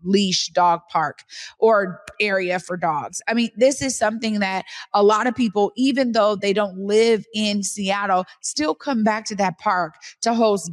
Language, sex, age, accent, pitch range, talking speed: English, female, 30-49, American, 200-240 Hz, 180 wpm